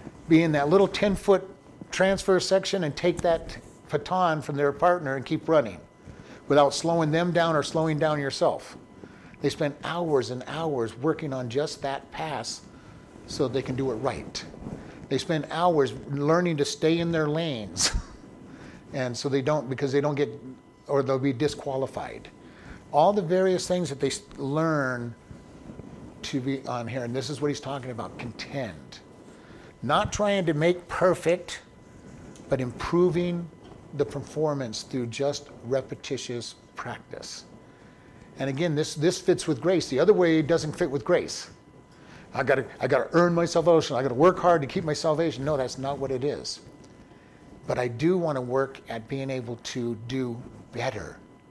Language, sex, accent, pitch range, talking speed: English, male, American, 130-165 Hz, 165 wpm